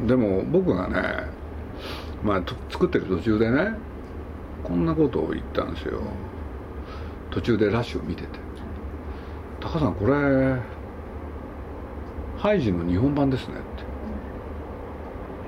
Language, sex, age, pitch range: Japanese, male, 50-69, 75-115 Hz